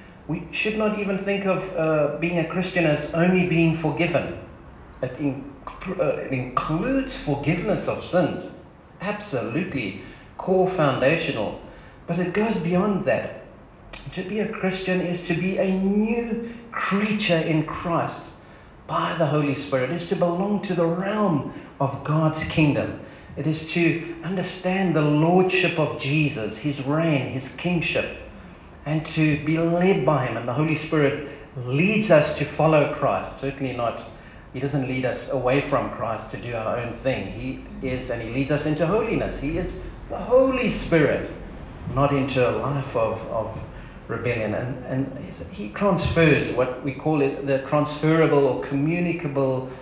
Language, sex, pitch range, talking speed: English, male, 130-175 Hz, 155 wpm